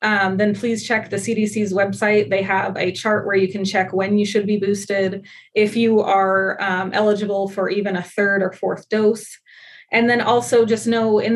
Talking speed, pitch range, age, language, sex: 200 wpm, 190-210 Hz, 20-39, English, female